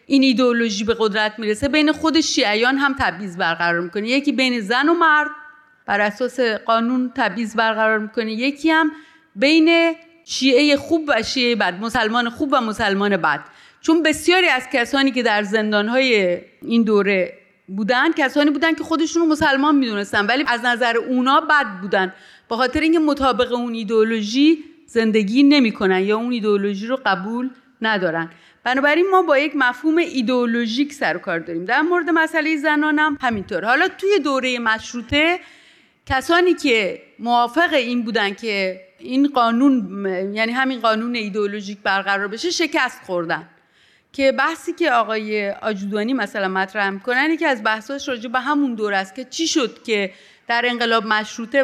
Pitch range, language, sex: 215-290 Hz, Persian, female